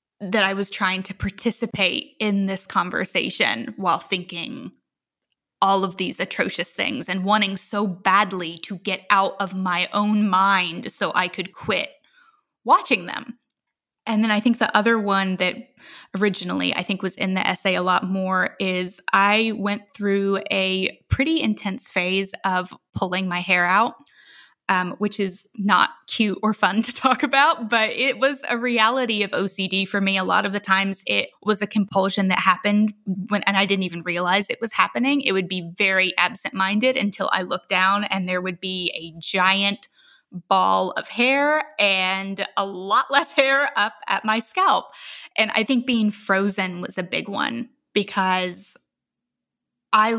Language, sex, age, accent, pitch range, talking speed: English, female, 20-39, American, 190-225 Hz, 170 wpm